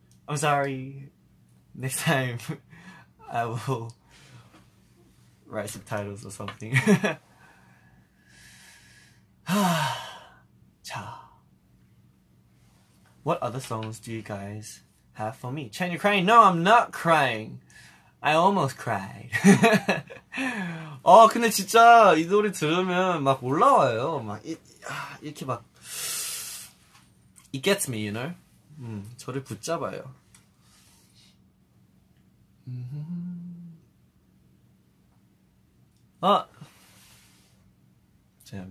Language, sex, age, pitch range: Korean, male, 20-39, 110-160 Hz